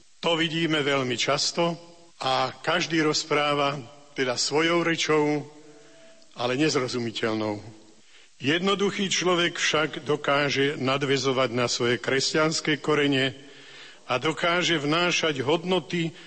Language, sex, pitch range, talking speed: Slovak, male, 135-175 Hz, 90 wpm